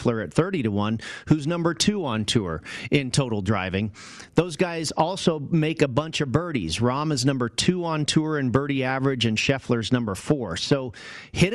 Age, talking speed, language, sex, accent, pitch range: 40-59, 180 wpm, English, male, American, 120-150 Hz